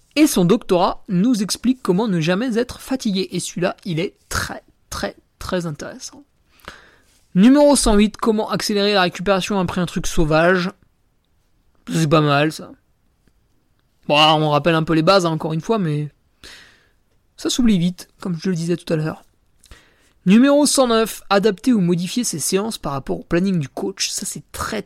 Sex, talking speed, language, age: male, 170 wpm, French, 20-39